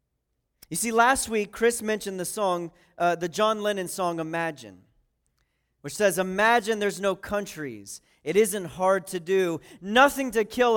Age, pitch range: 40-59, 165-205 Hz